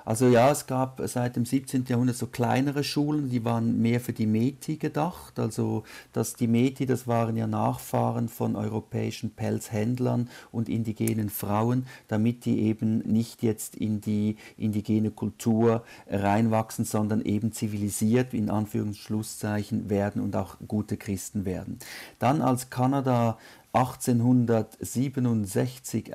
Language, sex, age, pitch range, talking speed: German, male, 50-69, 110-125 Hz, 130 wpm